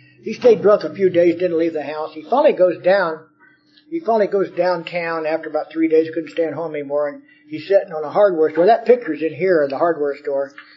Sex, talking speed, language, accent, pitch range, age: male, 230 wpm, English, American, 160-235 Hz, 50-69